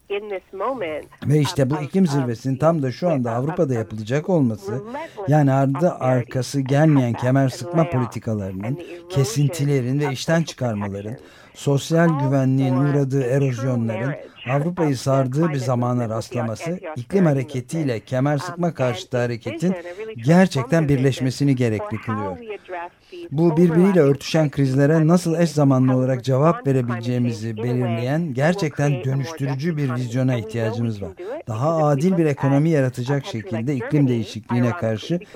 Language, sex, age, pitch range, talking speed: Turkish, male, 50-69, 125-160 Hz, 115 wpm